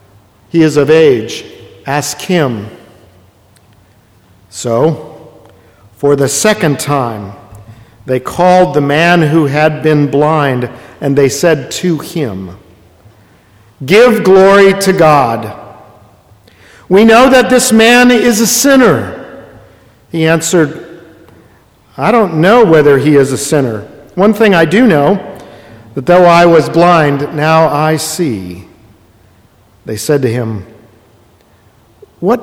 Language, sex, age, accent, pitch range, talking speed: English, male, 50-69, American, 115-175 Hz, 120 wpm